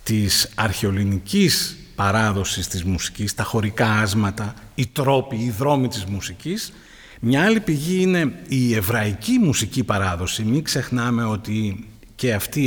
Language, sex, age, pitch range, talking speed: Greek, male, 50-69, 110-165 Hz, 130 wpm